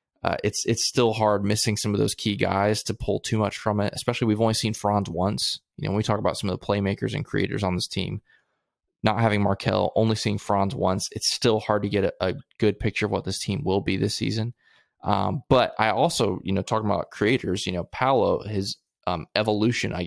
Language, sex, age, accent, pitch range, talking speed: English, male, 20-39, American, 100-115 Hz, 235 wpm